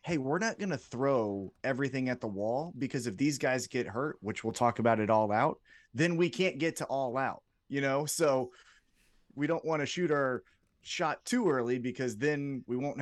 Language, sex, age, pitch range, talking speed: English, male, 30-49, 115-145 Hz, 210 wpm